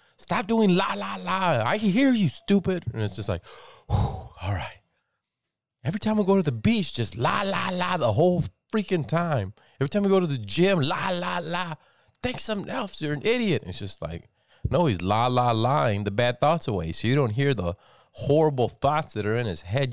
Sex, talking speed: male, 210 wpm